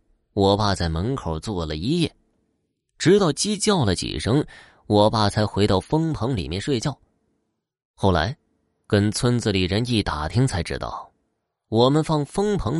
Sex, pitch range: male, 90-125 Hz